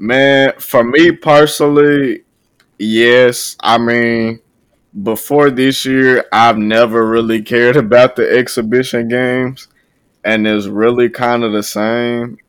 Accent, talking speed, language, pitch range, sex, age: American, 120 wpm, English, 110-125 Hz, male, 20-39